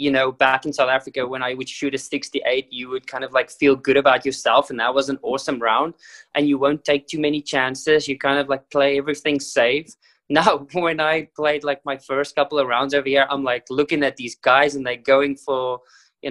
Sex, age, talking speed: male, 20-39, 235 wpm